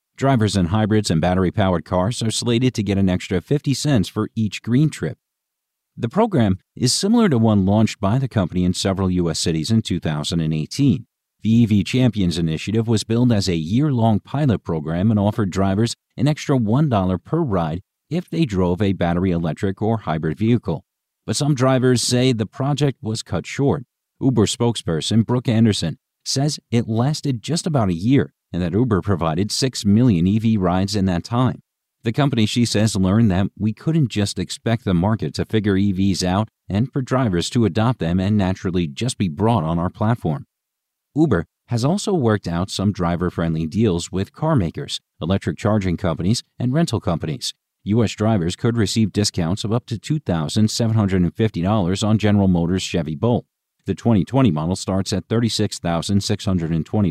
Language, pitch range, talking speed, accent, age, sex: English, 90-120 Hz, 165 wpm, American, 50-69, male